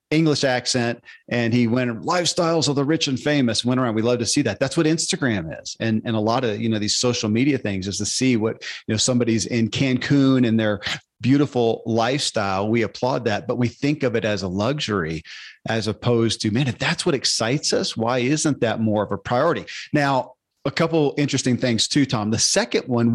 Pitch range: 110-135 Hz